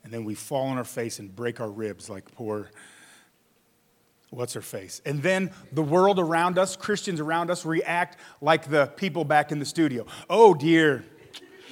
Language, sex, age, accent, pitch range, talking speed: English, male, 30-49, American, 125-165 Hz, 180 wpm